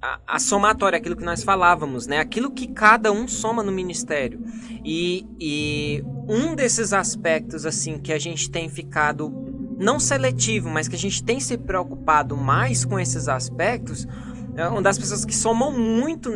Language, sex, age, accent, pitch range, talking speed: Portuguese, male, 20-39, Brazilian, 125-210 Hz, 160 wpm